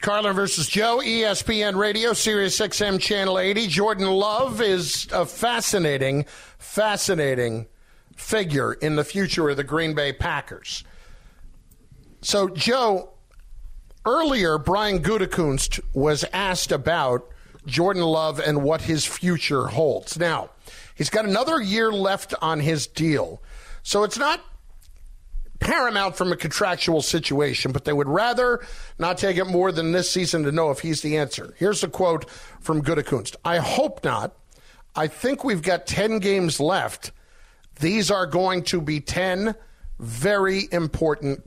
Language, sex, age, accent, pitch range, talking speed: English, male, 50-69, American, 150-200 Hz, 140 wpm